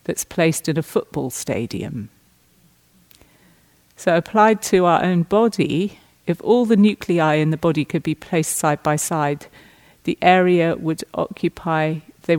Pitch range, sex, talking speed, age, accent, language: 145-195 Hz, female, 145 wpm, 50-69, British, English